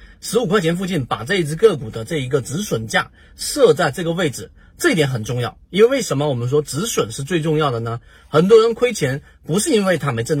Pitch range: 115-180 Hz